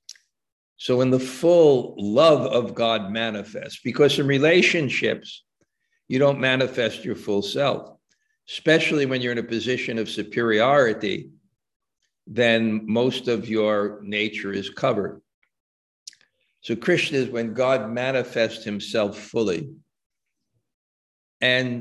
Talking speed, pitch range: 115 wpm, 105-130 Hz